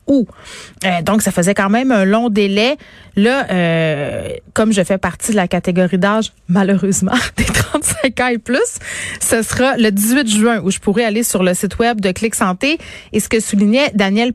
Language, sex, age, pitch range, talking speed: French, female, 30-49, 190-240 Hz, 190 wpm